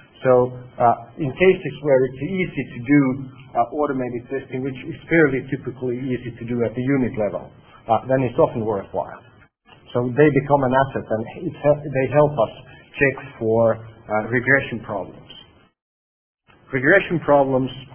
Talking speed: 155 wpm